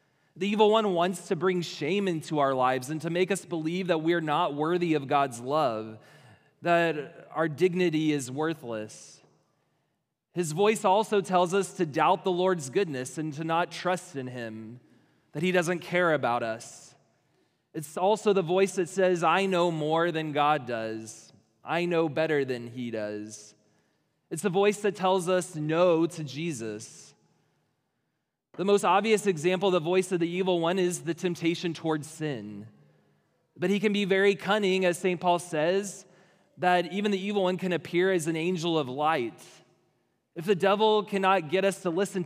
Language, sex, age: English, male, 20-39